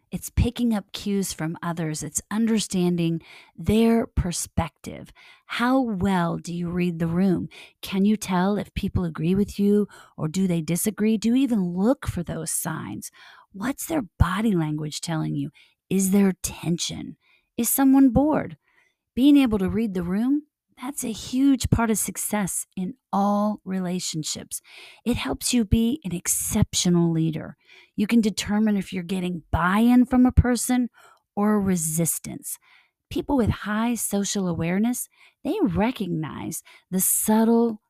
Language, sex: English, female